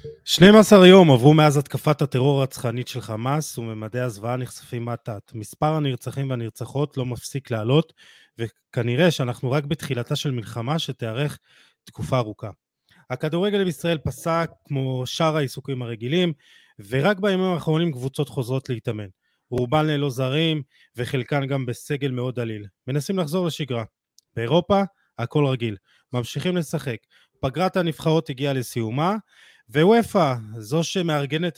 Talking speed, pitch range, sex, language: 120 wpm, 125-160 Hz, male, Hebrew